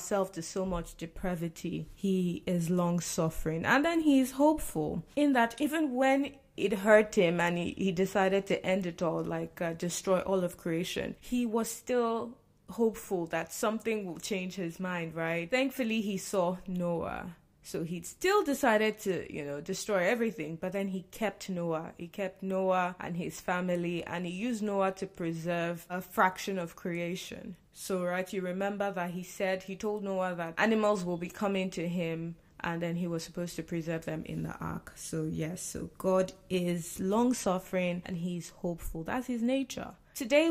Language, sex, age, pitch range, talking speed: English, female, 20-39, 175-215 Hz, 175 wpm